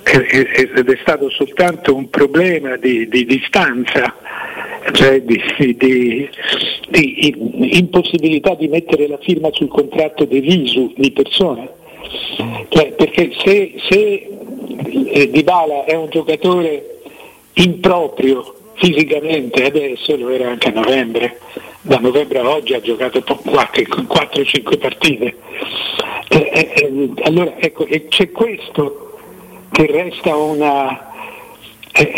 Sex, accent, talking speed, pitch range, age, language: male, native, 110 wpm, 145-185 Hz, 60-79, Italian